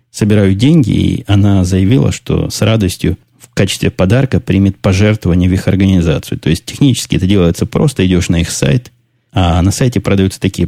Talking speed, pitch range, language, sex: 175 wpm, 90-115 Hz, Russian, male